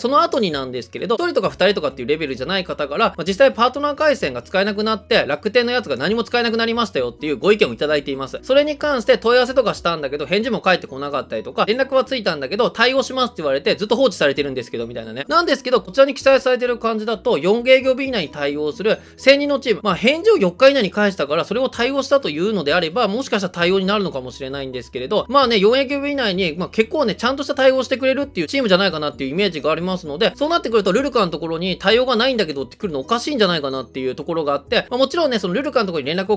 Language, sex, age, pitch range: Japanese, male, 20-39, 170-260 Hz